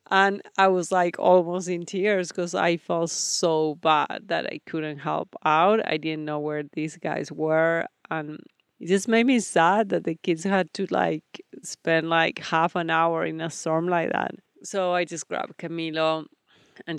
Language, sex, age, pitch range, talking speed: English, female, 30-49, 150-175 Hz, 185 wpm